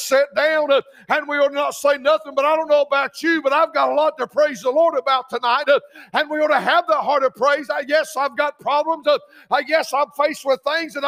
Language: English